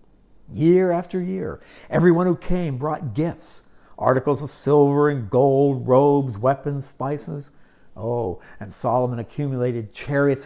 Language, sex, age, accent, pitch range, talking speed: English, male, 60-79, American, 125-175 Hz, 120 wpm